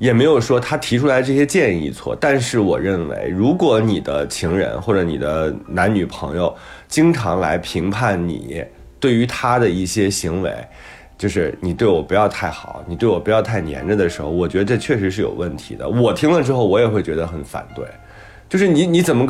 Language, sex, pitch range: Chinese, male, 95-145 Hz